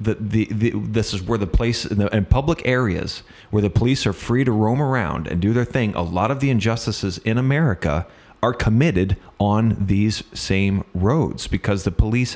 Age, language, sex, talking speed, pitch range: 30-49, English, male, 200 wpm, 95-125 Hz